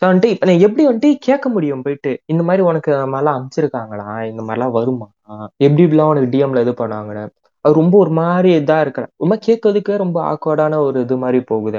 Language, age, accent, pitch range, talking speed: Tamil, 20-39, native, 130-185 Hz, 195 wpm